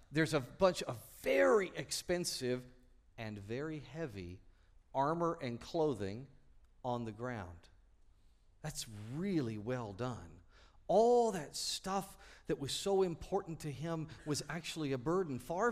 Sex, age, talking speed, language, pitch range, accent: male, 50-69, 125 wpm, English, 95-155 Hz, American